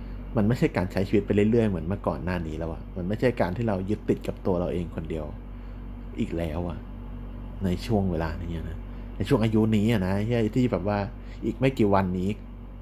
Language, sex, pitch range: Thai, male, 95-120 Hz